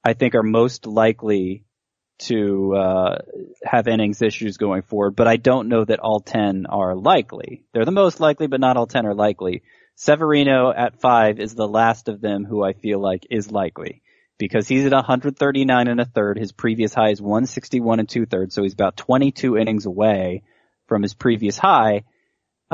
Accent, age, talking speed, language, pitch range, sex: American, 30-49, 185 wpm, English, 105-130 Hz, male